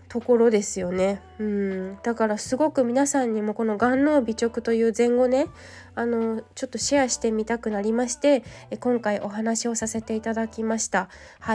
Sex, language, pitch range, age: female, Japanese, 220-265 Hz, 20-39